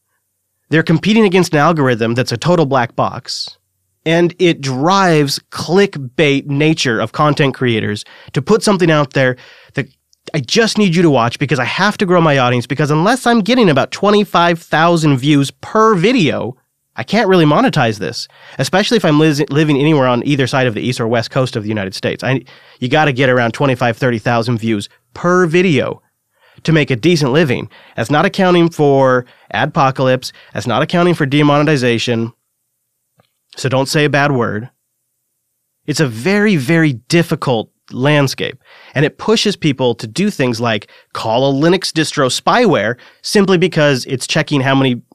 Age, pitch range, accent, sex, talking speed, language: 30-49, 125-170 Hz, American, male, 165 wpm, English